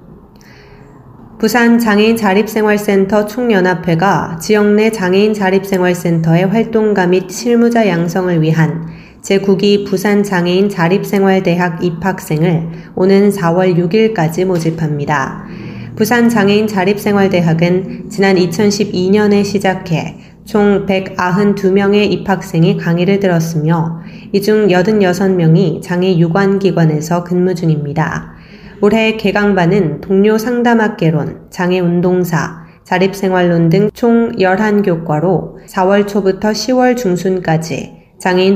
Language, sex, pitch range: Korean, female, 175-205 Hz